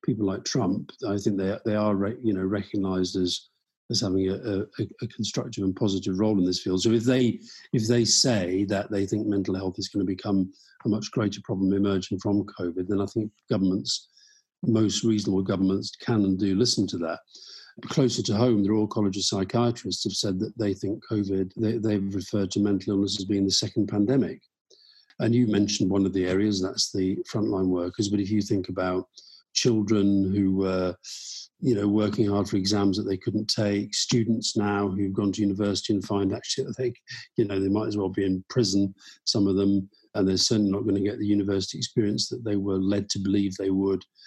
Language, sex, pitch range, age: English, male, 95-110 Hz, 50-69